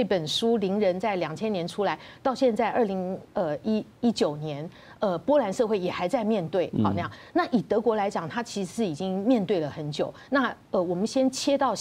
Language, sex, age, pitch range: Chinese, female, 50-69, 175-250 Hz